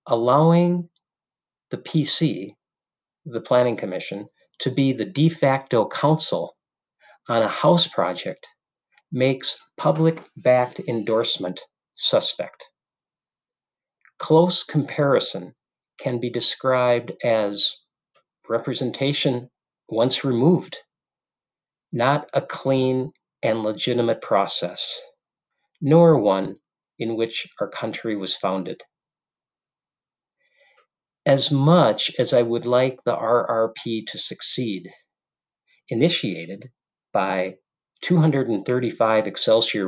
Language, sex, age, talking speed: English, male, 50-69, 85 wpm